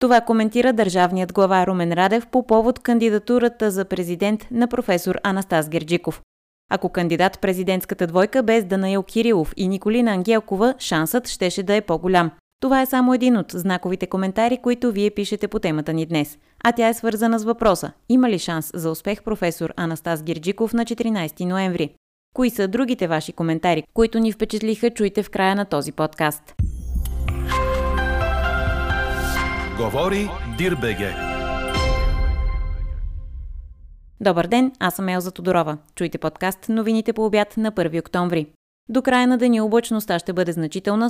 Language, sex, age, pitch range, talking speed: Bulgarian, female, 20-39, 160-220 Hz, 145 wpm